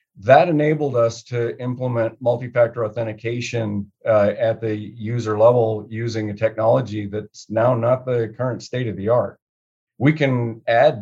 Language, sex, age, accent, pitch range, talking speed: English, male, 50-69, American, 105-120 Hz, 145 wpm